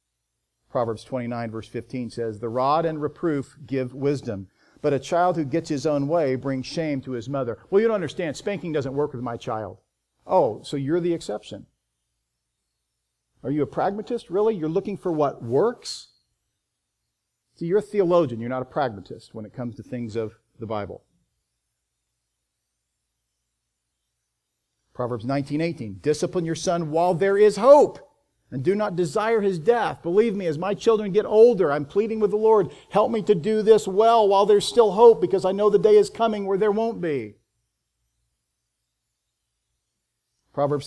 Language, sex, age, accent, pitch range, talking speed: English, male, 50-69, American, 125-190 Hz, 170 wpm